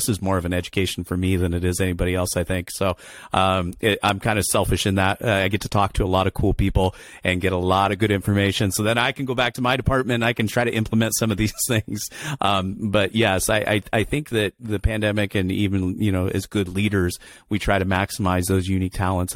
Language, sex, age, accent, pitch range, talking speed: English, male, 40-59, American, 90-105 Hz, 265 wpm